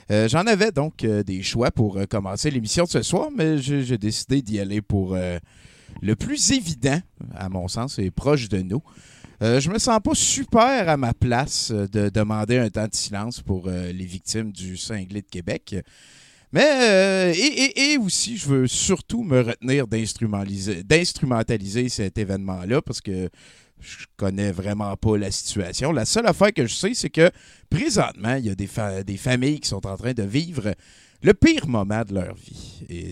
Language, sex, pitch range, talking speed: French, male, 95-140 Hz, 195 wpm